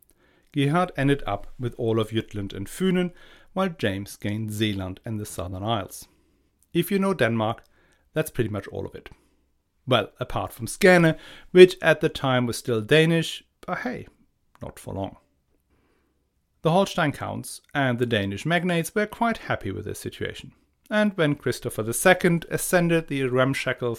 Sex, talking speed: male, 160 wpm